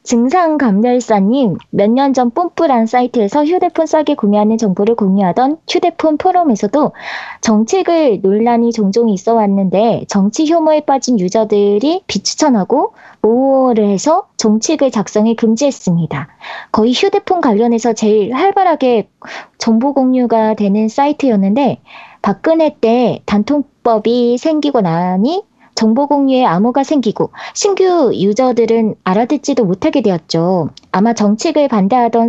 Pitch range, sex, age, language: 215-290 Hz, female, 20-39, Korean